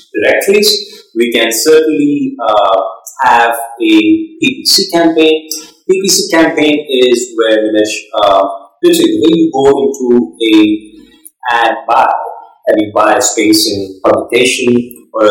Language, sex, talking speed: English, male, 110 wpm